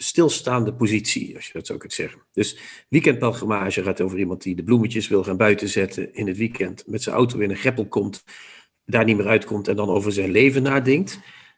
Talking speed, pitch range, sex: 205 wpm, 100-120 Hz, male